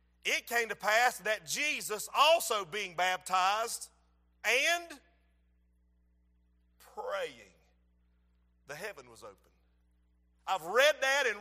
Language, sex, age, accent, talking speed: English, male, 50-69, American, 100 wpm